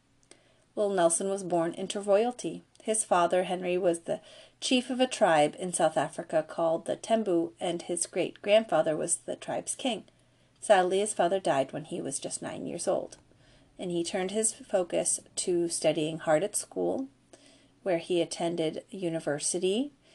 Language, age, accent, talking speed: English, 40-59, American, 160 wpm